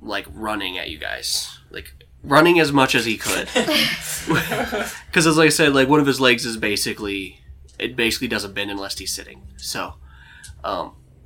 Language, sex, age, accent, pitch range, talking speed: English, male, 20-39, American, 80-125 Hz, 170 wpm